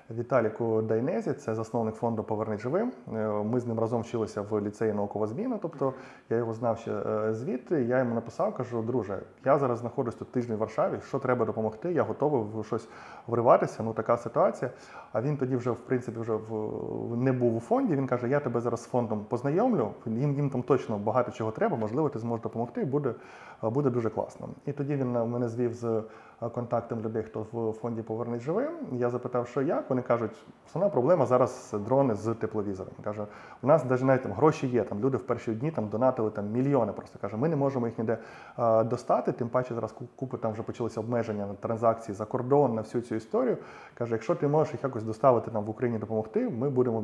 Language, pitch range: Ukrainian, 110-125 Hz